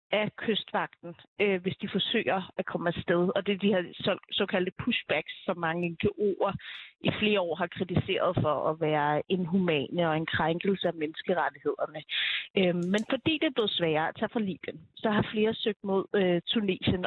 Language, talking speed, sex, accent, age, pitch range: Danish, 180 wpm, female, native, 30-49, 180-225 Hz